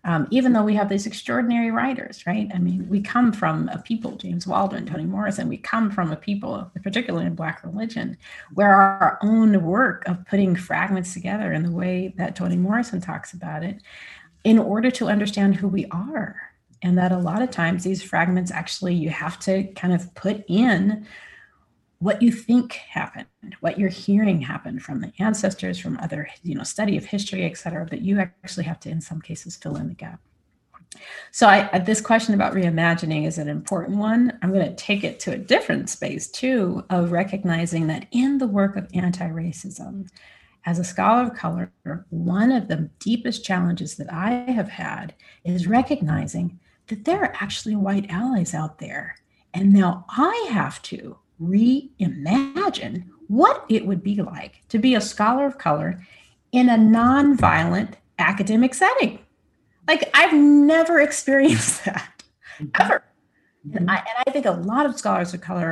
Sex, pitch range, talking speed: female, 180-230 Hz, 175 wpm